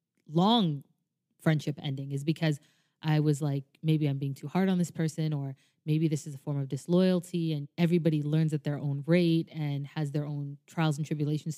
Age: 20-39